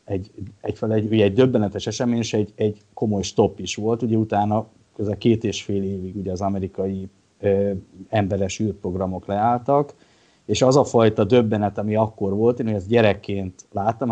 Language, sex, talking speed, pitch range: Hungarian, male, 180 wpm, 100-110 Hz